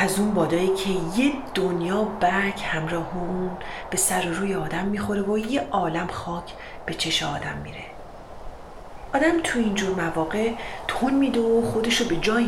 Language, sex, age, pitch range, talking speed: Persian, female, 30-49, 185-250 Hz, 160 wpm